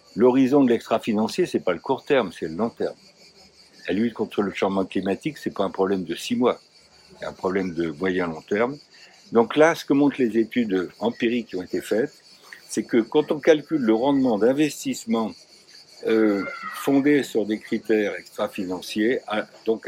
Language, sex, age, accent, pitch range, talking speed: French, male, 60-79, French, 100-145 Hz, 180 wpm